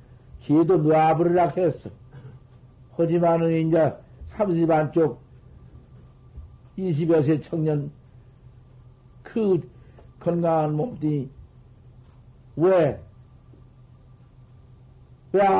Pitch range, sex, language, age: 125-165 Hz, male, Korean, 60-79